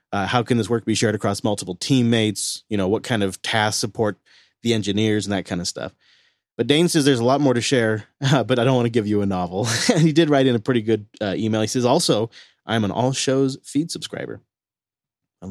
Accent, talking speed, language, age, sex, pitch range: American, 245 wpm, English, 30-49, male, 110-145 Hz